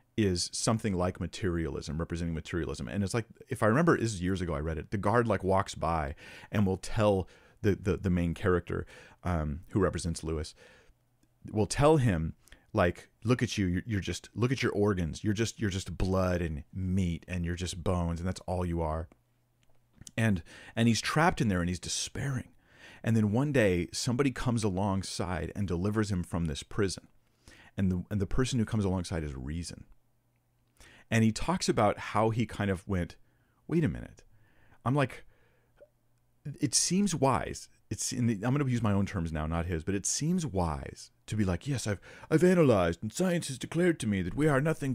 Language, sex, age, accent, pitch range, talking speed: English, male, 40-59, American, 90-120 Hz, 200 wpm